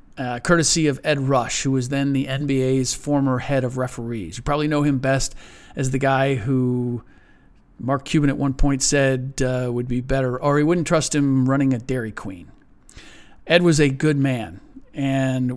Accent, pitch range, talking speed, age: American, 125-145 Hz, 185 wpm, 40-59